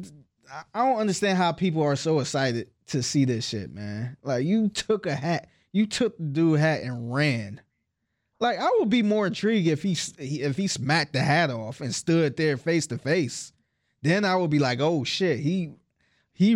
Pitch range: 125-170 Hz